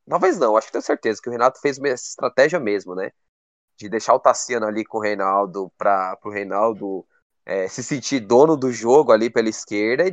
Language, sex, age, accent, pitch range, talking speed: Portuguese, male, 20-39, Brazilian, 110-170 Hz, 205 wpm